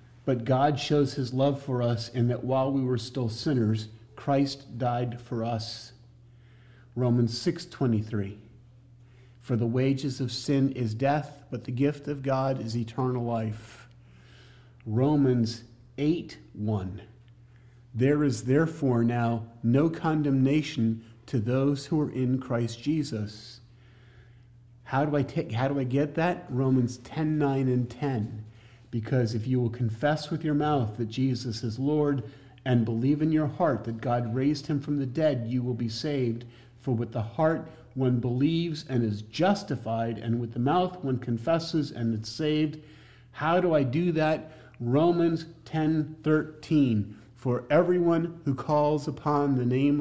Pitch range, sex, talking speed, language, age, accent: 120-145 Hz, male, 150 wpm, English, 40-59, American